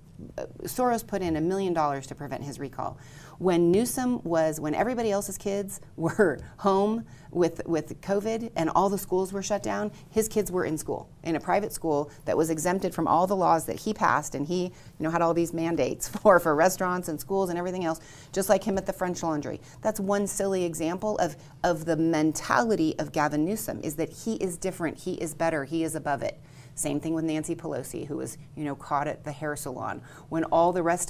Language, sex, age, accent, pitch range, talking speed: English, female, 30-49, American, 145-185 Hz, 215 wpm